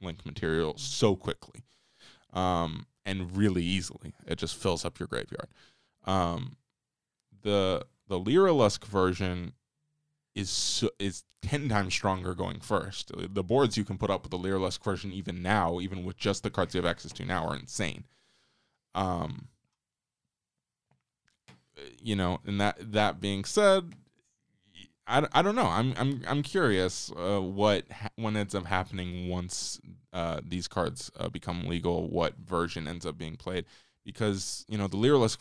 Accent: American